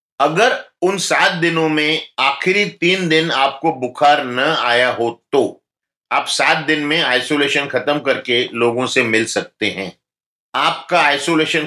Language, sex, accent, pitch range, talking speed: Hindi, male, native, 125-160 Hz, 145 wpm